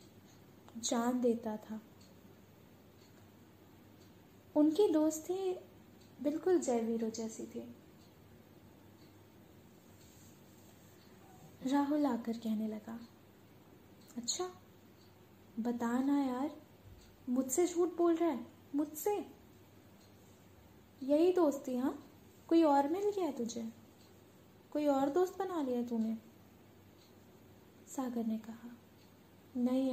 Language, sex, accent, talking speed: Hindi, female, native, 85 wpm